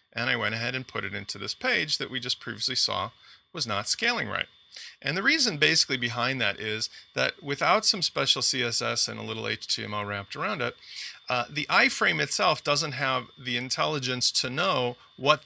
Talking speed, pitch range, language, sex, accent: 190 wpm, 115-140 Hz, English, male, American